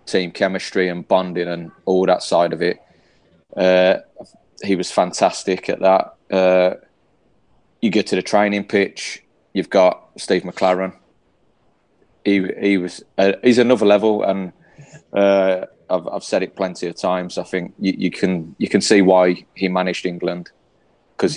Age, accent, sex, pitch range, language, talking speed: 20-39, British, male, 90-100 Hz, English, 155 wpm